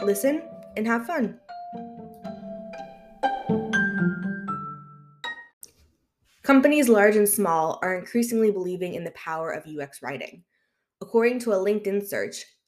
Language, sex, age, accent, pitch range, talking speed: English, female, 20-39, American, 165-210 Hz, 105 wpm